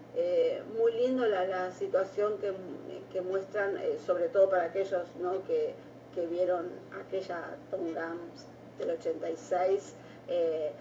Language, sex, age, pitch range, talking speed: Spanish, female, 40-59, 185-270 Hz, 135 wpm